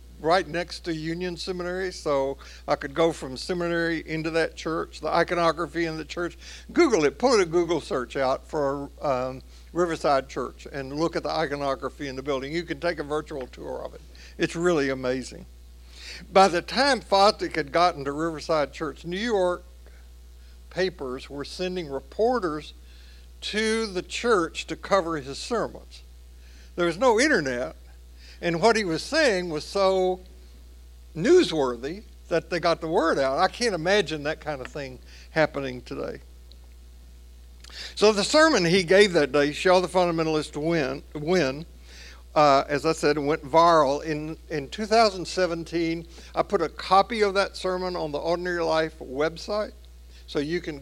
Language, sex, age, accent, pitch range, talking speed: English, male, 60-79, American, 130-180 Hz, 155 wpm